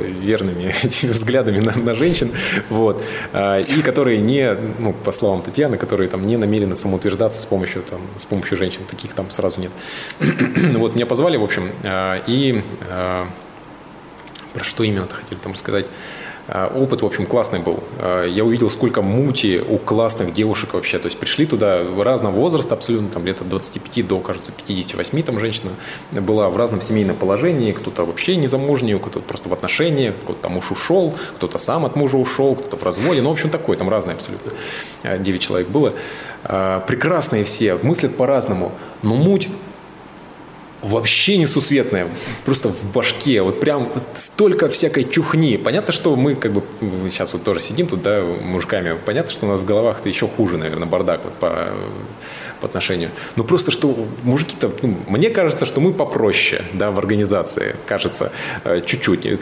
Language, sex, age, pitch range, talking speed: Russian, male, 20-39, 95-120 Hz, 165 wpm